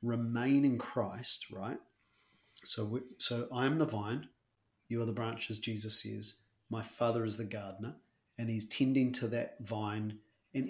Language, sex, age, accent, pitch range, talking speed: English, male, 30-49, Australian, 110-130 Hz, 165 wpm